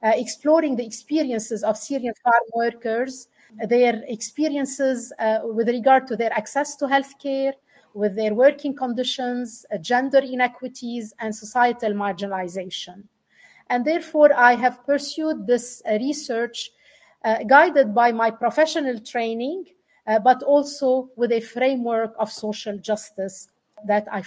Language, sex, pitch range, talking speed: English, female, 215-260 Hz, 130 wpm